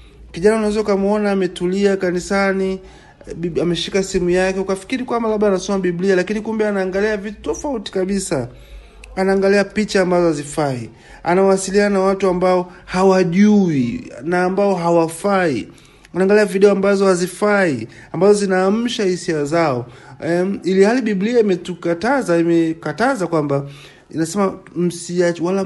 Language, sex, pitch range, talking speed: Swahili, male, 170-205 Hz, 120 wpm